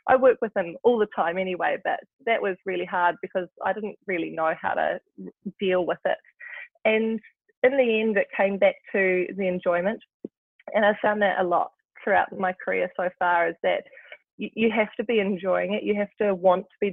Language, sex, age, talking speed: English, female, 20-39, 205 wpm